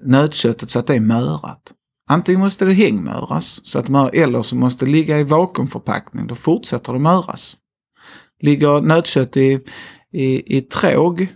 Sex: male